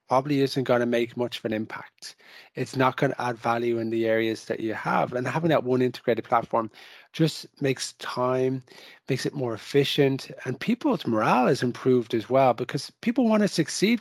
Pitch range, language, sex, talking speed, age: 125-150 Hz, English, male, 195 wpm, 30-49